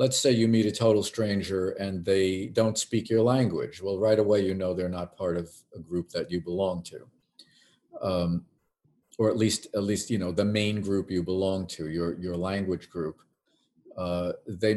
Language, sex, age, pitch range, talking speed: English, male, 50-69, 95-110 Hz, 195 wpm